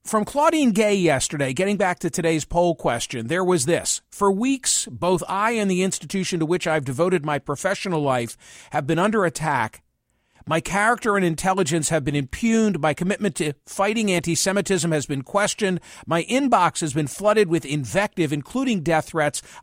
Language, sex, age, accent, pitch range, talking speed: English, male, 50-69, American, 160-205 Hz, 170 wpm